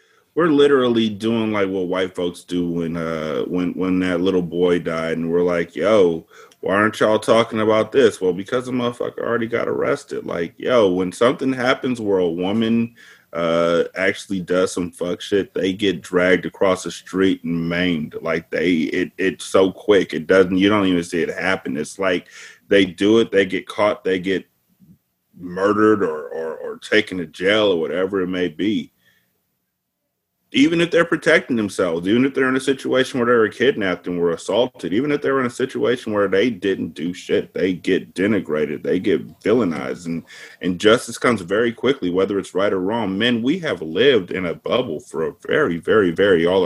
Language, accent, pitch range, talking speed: English, American, 90-120 Hz, 195 wpm